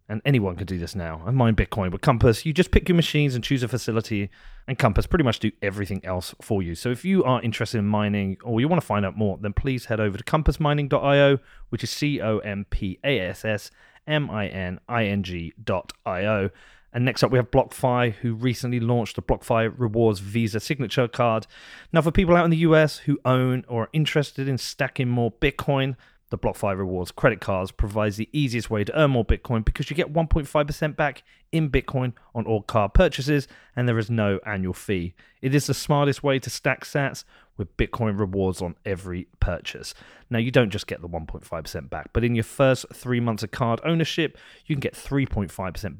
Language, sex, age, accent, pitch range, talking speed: English, male, 30-49, British, 105-140 Hz, 195 wpm